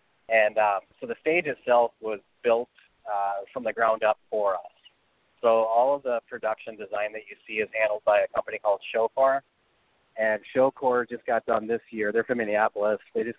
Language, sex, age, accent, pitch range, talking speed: English, male, 30-49, American, 105-120 Hz, 195 wpm